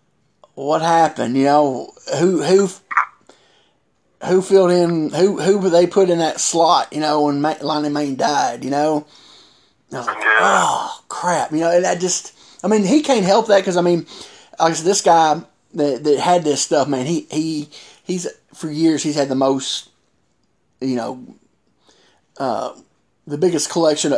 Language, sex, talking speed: English, male, 180 wpm